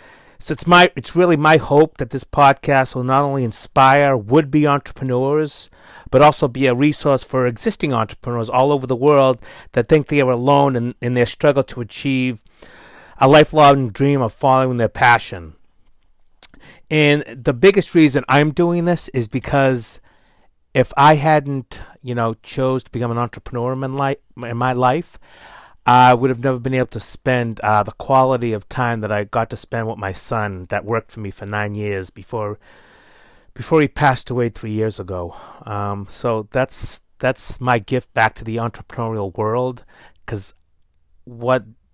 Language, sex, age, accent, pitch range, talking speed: English, male, 30-49, American, 110-140 Hz, 170 wpm